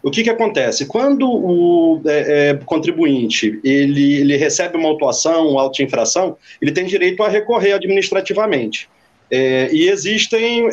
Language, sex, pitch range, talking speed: Portuguese, male, 160-245 Hz, 145 wpm